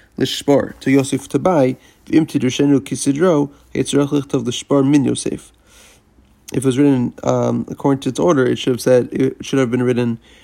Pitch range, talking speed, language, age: 120-140 Hz, 190 wpm, English, 30-49